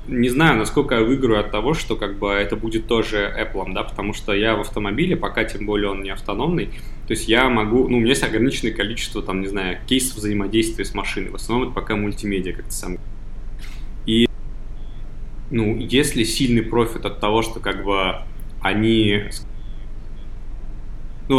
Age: 20-39